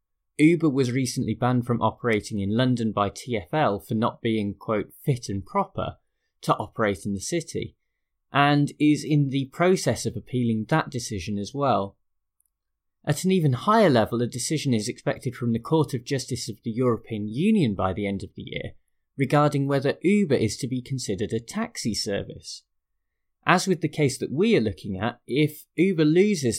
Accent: British